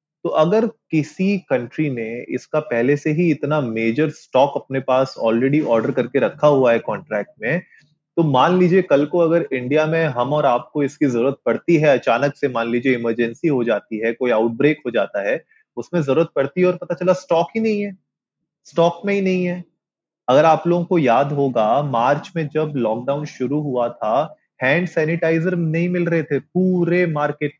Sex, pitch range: male, 135-180 Hz